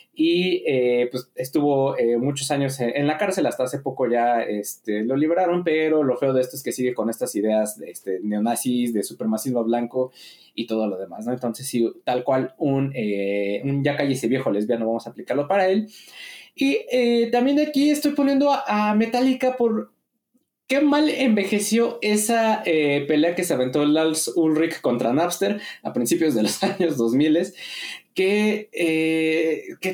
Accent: Mexican